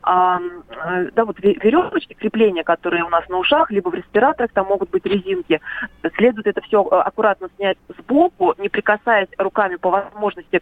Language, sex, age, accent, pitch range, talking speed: Russian, female, 30-49, native, 190-235 Hz, 160 wpm